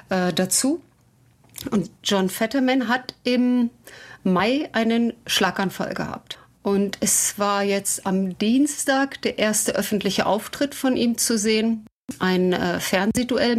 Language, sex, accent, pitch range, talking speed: German, female, German, 200-250 Hz, 120 wpm